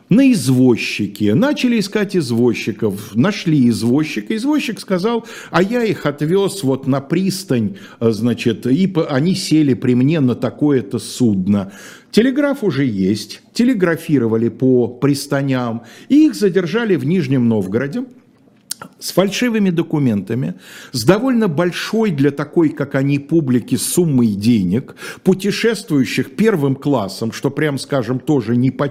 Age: 50-69